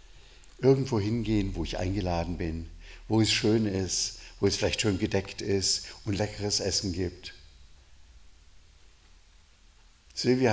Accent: German